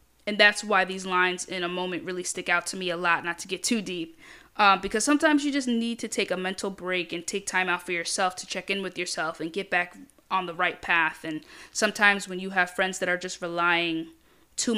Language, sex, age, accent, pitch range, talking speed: English, female, 10-29, American, 175-195 Hz, 245 wpm